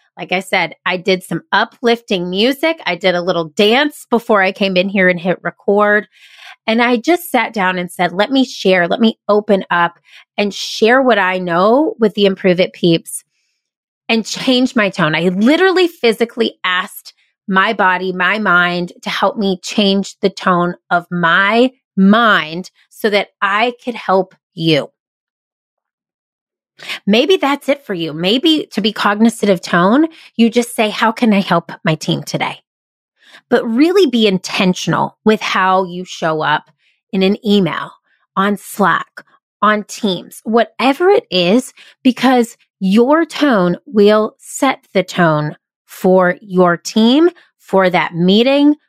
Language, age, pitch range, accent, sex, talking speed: English, 30-49, 185-240 Hz, American, female, 155 wpm